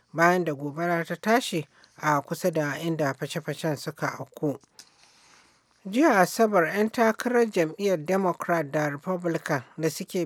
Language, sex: English, male